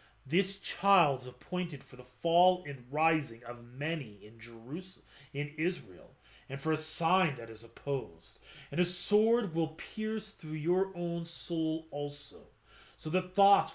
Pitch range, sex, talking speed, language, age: 135-180 Hz, male, 155 wpm, English, 30-49